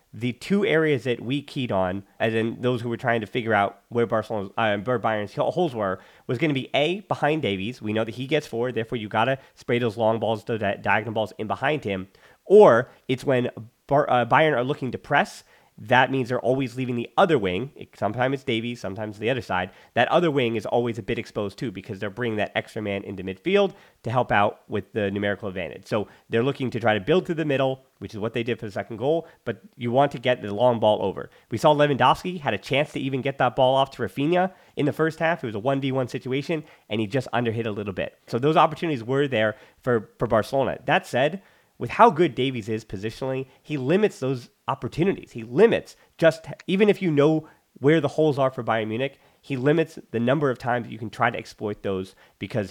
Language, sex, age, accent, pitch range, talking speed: English, male, 30-49, American, 110-145 Hz, 230 wpm